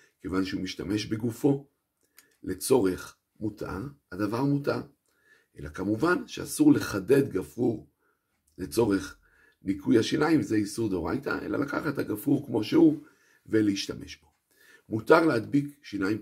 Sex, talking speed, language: male, 110 wpm, Hebrew